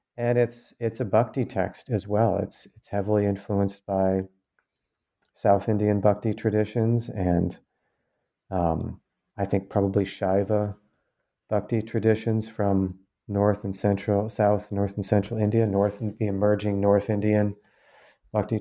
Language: English